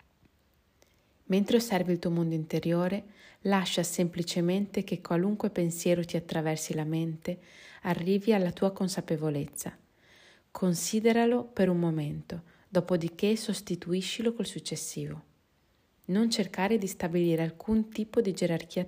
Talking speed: 110 wpm